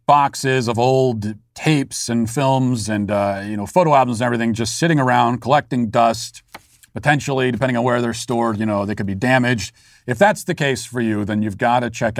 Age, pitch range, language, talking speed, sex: 40-59, 115-140 Hz, English, 205 wpm, male